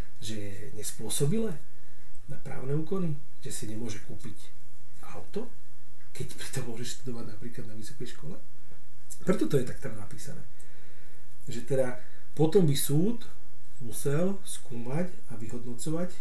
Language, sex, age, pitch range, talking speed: Slovak, male, 40-59, 120-155 Hz, 125 wpm